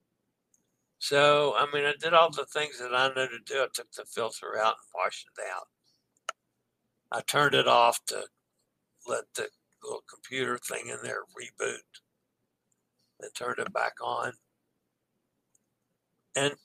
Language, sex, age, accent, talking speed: English, male, 60-79, American, 150 wpm